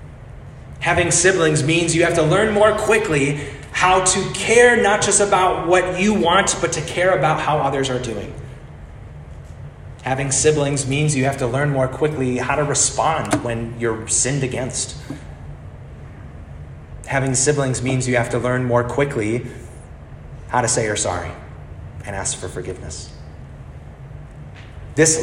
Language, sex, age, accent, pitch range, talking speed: English, male, 30-49, American, 120-165 Hz, 145 wpm